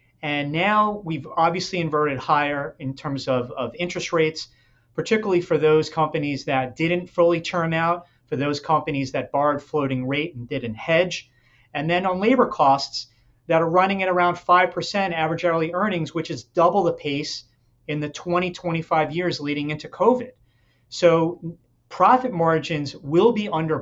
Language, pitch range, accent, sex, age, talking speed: English, 135-175 Hz, American, male, 30-49, 160 wpm